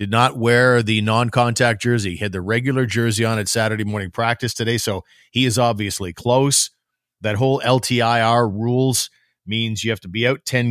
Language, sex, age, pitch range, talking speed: English, male, 40-59, 105-125 Hz, 185 wpm